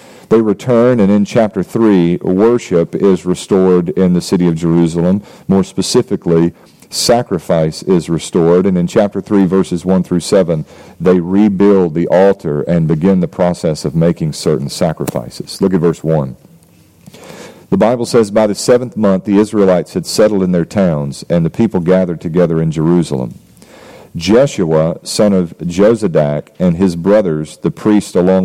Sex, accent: male, American